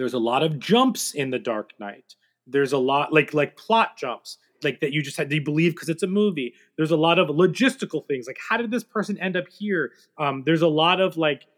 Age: 30-49